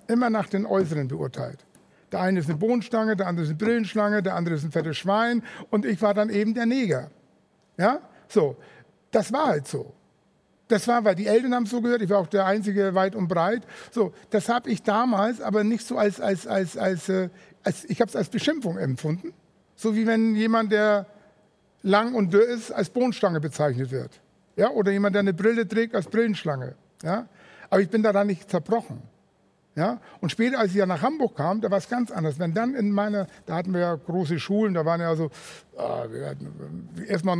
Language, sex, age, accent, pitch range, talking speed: German, male, 60-79, German, 175-220 Hz, 210 wpm